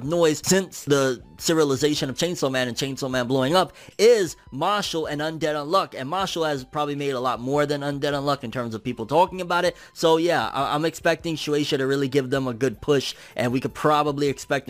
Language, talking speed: English, 215 wpm